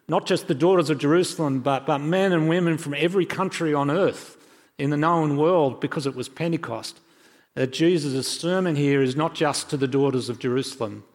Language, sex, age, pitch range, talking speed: English, male, 40-59, 120-150 Hz, 195 wpm